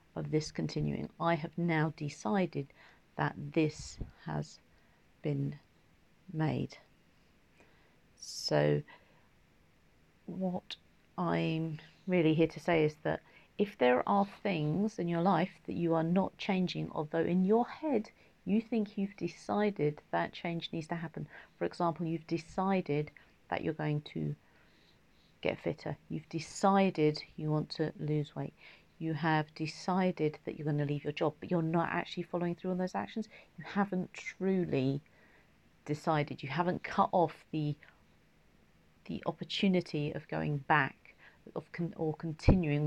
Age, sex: 50-69, female